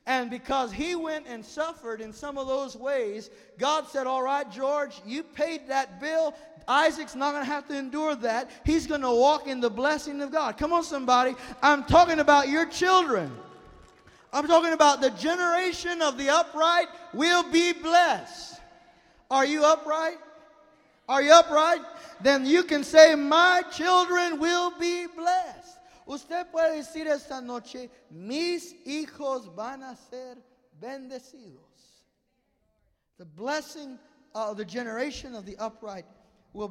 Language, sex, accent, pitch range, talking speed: English, male, American, 200-310 Hz, 150 wpm